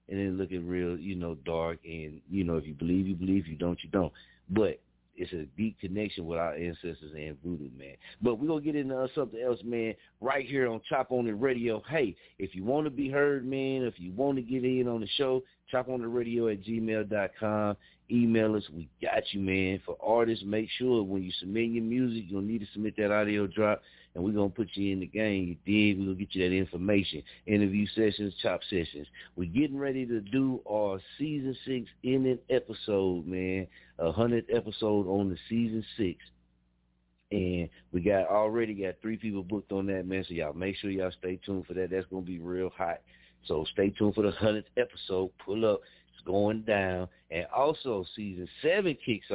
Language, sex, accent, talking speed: English, male, American, 215 wpm